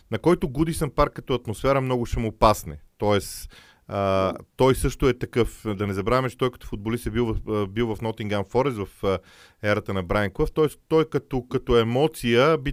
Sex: male